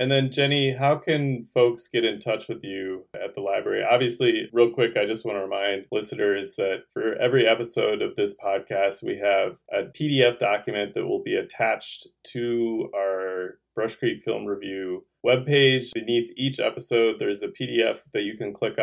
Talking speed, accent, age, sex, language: 180 wpm, American, 20-39, male, English